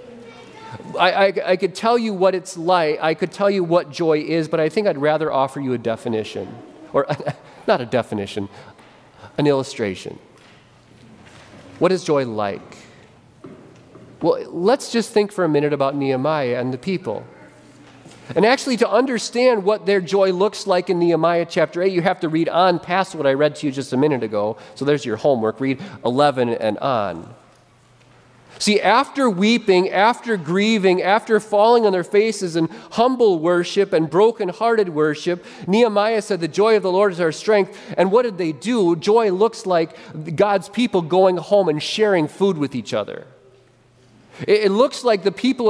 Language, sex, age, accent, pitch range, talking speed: English, male, 40-59, American, 145-205 Hz, 175 wpm